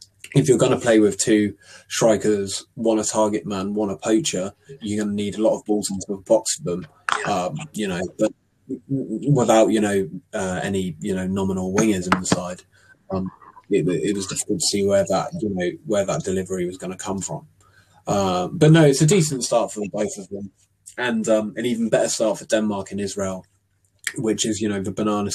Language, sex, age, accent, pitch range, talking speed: English, male, 20-39, British, 95-125 Hz, 215 wpm